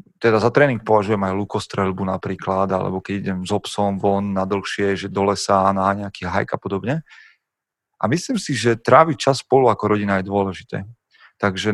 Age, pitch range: 30-49, 100-115 Hz